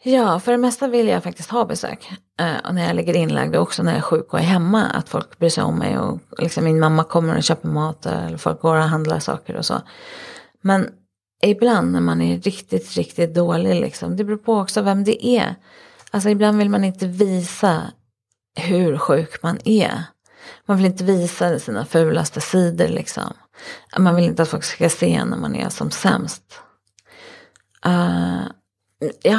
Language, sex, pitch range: English, female, 155-205 Hz